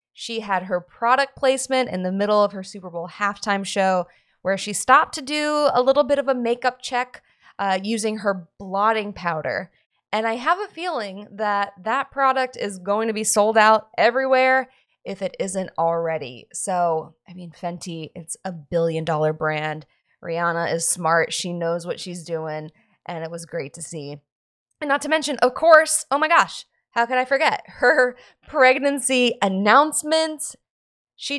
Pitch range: 185-275 Hz